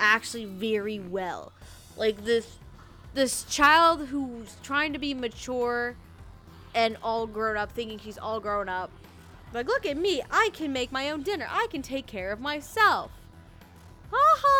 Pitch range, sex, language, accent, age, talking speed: 190-245 Hz, female, English, American, 20-39, 160 wpm